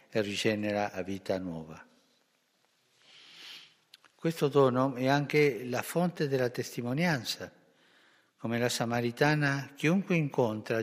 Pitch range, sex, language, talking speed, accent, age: 110-140 Hz, male, Italian, 95 wpm, native, 60-79